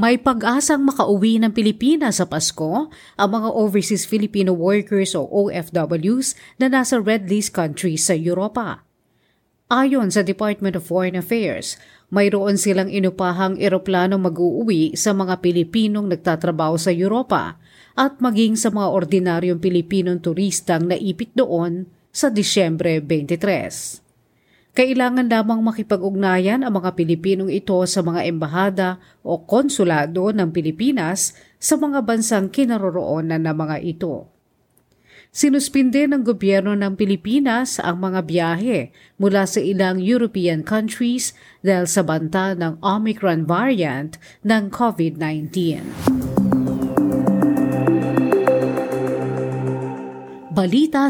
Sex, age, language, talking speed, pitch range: female, 40-59, Filipino, 110 wpm, 175-220 Hz